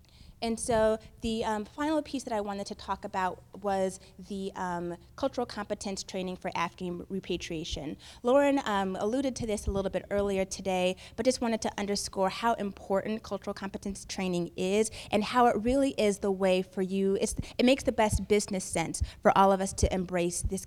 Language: English